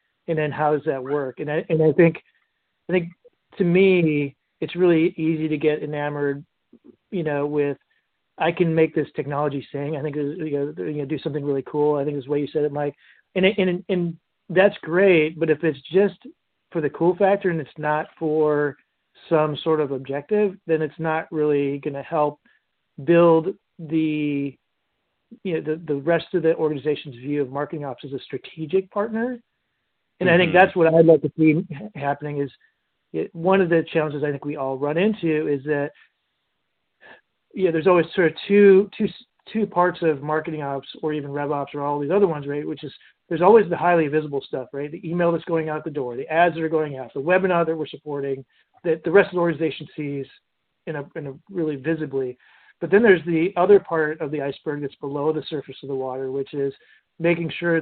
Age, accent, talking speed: 40-59, American, 210 wpm